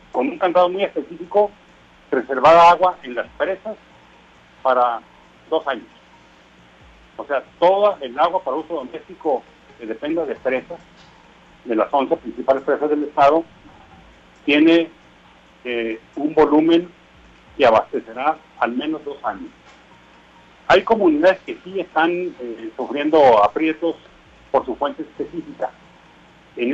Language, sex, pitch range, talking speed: Spanish, male, 125-175 Hz, 125 wpm